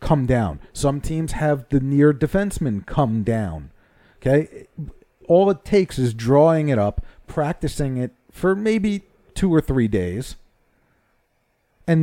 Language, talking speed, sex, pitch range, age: English, 135 wpm, male, 115-145 Hz, 40-59